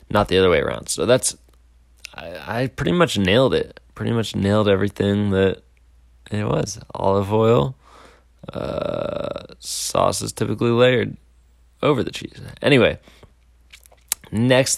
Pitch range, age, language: 85-110 Hz, 20-39, English